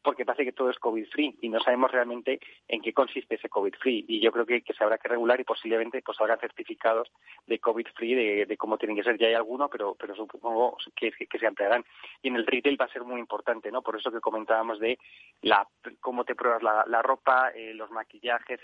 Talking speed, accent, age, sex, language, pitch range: 235 wpm, Spanish, 30-49, male, Spanish, 110-130 Hz